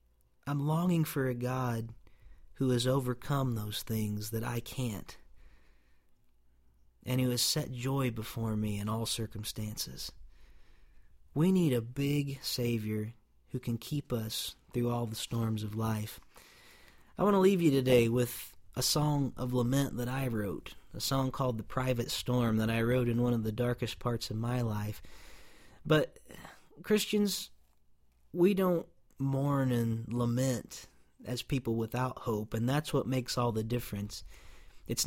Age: 40-59